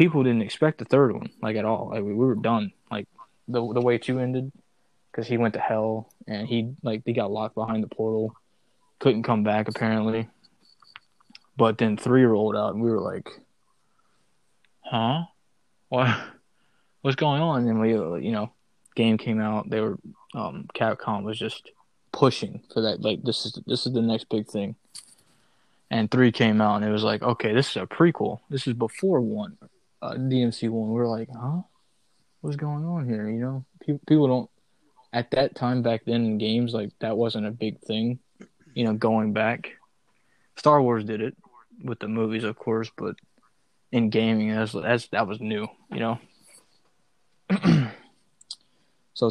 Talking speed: 180 wpm